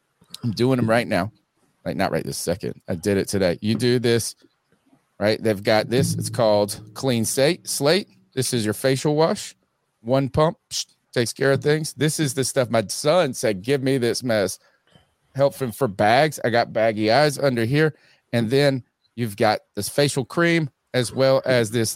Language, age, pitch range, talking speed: English, 30-49, 110-135 Hz, 185 wpm